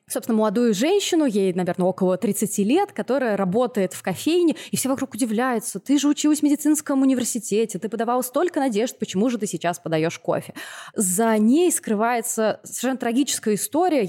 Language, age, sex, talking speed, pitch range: Russian, 20-39, female, 160 wpm, 180-240 Hz